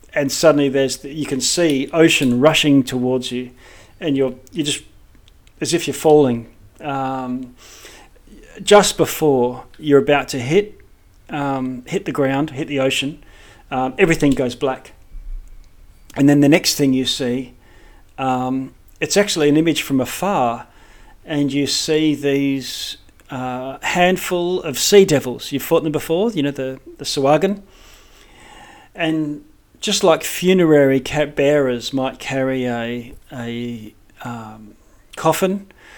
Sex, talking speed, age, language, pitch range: male, 135 wpm, 40-59, English, 125-150 Hz